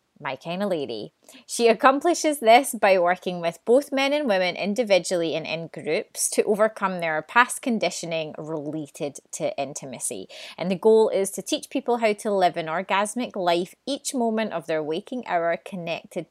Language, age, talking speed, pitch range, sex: English, 30-49, 170 wpm, 170-230 Hz, female